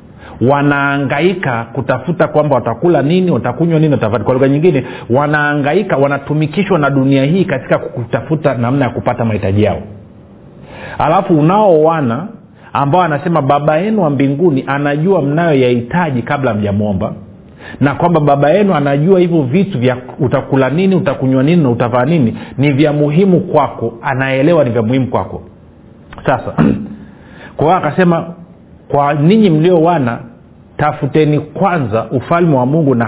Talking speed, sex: 130 wpm, male